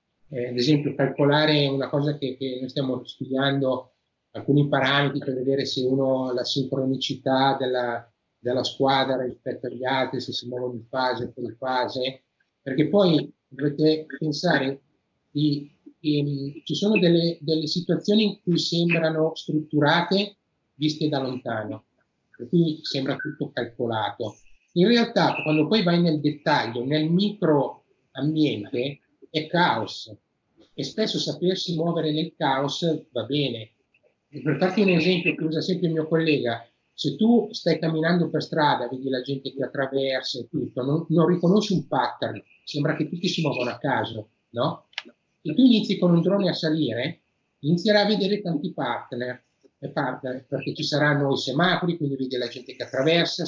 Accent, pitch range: native, 135-165 Hz